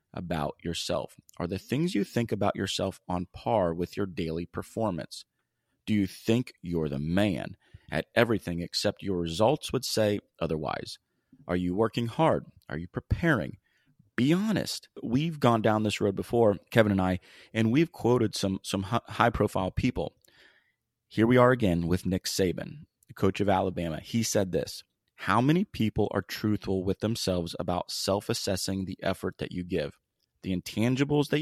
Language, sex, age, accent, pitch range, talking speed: English, male, 30-49, American, 90-115 Hz, 160 wpm